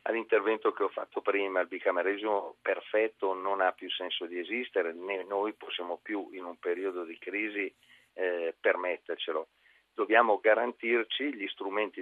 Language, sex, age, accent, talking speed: Italian, male, 40-59, native, 145 wpm